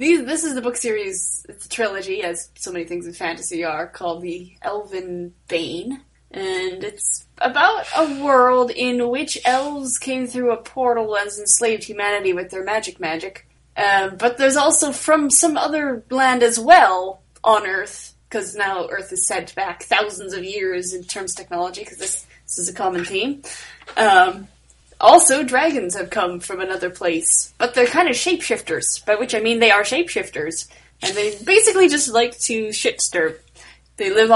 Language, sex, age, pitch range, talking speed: English, female, 20-39, 195-265 Hz, 175 wpm